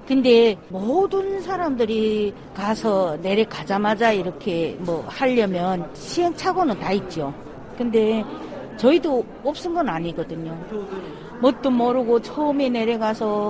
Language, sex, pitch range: Korean, female, 200-280 Hz